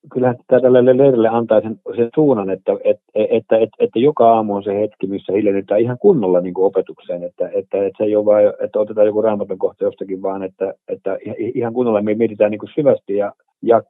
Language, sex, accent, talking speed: Finnish, male, native, 205 wpm